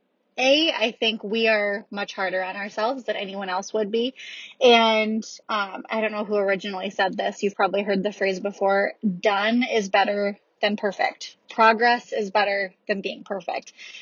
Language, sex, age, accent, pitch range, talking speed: English, female, 20-39, American, 205-250 Hz, 170 wpm